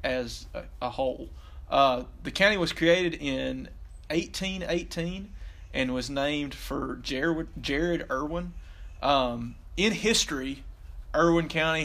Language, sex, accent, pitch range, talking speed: English, male, American, 125-160 Hz, 110 wpm